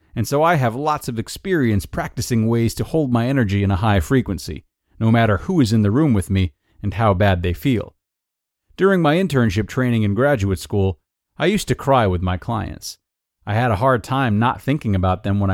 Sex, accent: male, American